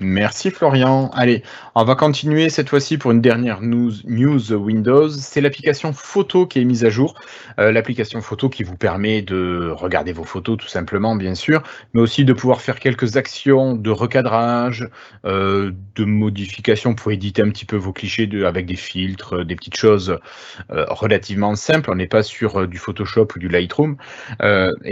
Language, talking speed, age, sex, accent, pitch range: French, 180 wpm, 30-49, male, French, 105-135 Hz